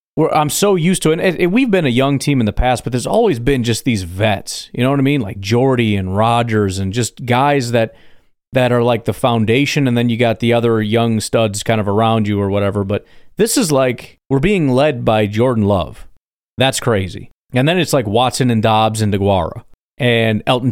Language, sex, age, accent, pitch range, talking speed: English, male, 30-49, American, 110-145 Hz, 230 wpm